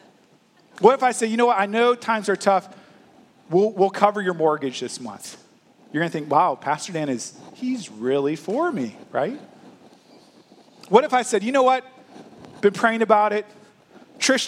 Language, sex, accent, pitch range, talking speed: English, male, American, 195-255 Hz, 180 wpm